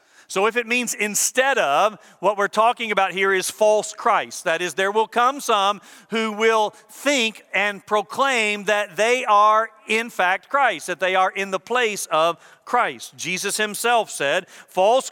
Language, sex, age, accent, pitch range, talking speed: English, male, 50-69, American, 185-235 Hz, 170 wpm